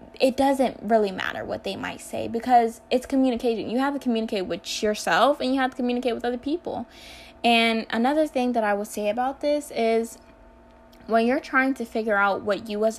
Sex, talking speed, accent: female, 205 wpm, American